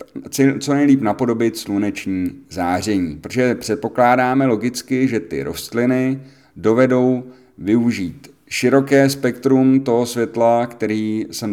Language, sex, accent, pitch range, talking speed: Czech, male, native, 100-135 Hz, 100 wpm